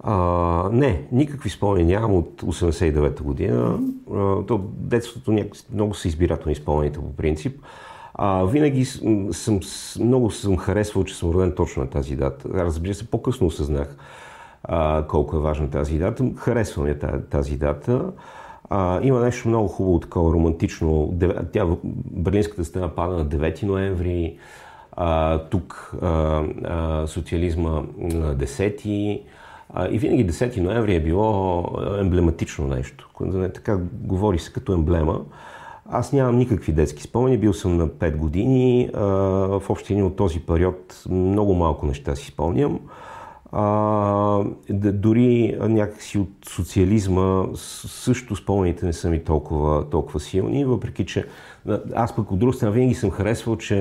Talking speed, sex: 135 wpm, male